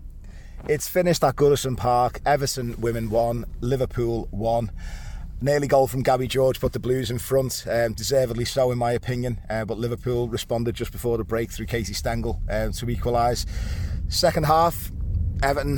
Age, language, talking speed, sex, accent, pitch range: 30-49, English, 165 wpm, male, British, 95-125 Hz